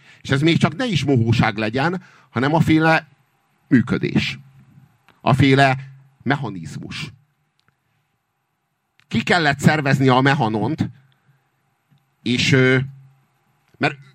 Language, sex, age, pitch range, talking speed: Hungarian, male, 50-69, 135-160 Hz, 90 wpm